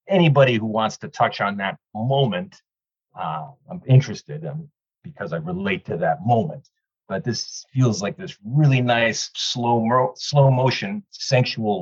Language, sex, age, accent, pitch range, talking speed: English, male, 40-59, American, 110-150 Hz, 150 wpm